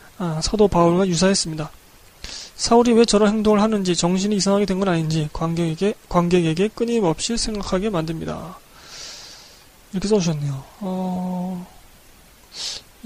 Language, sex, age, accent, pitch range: Korean, male, 20-39, native, 175-210 Hz